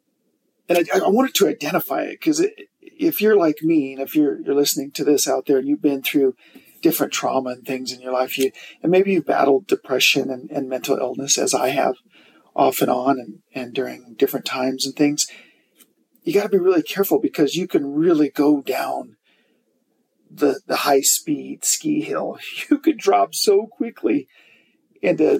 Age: 40-59